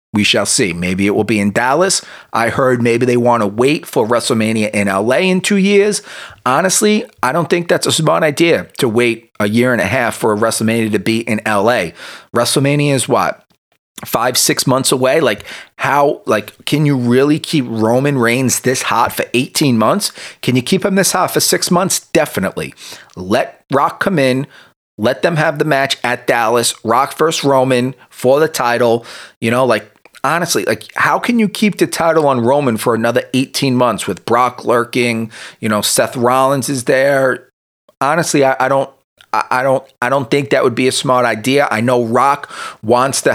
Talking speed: 195 wpm